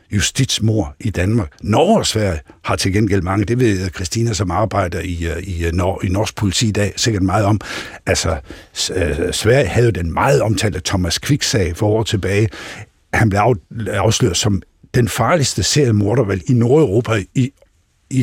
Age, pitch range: 60-79, 95-130 Hz